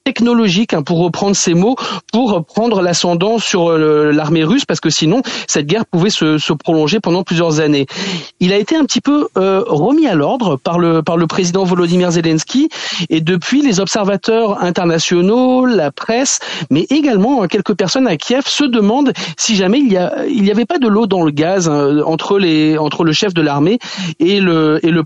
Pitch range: 150-195 Hz